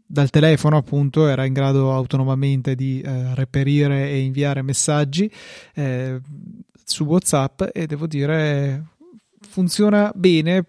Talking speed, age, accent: 120 wpm, 20-39, native